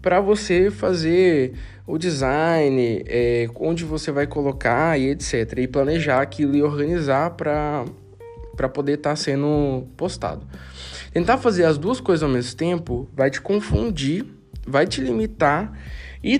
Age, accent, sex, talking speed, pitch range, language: 20-39, Brazilian, male, 140 wpm, 120-165 Hz, Portuguese